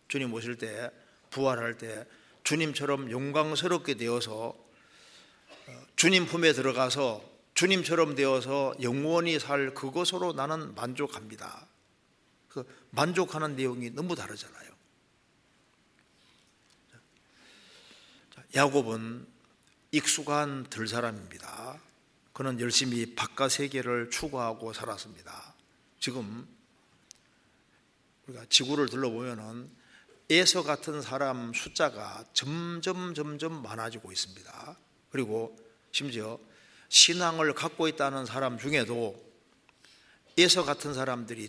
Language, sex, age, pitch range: Korean, male, 50-69, 115-150 Hz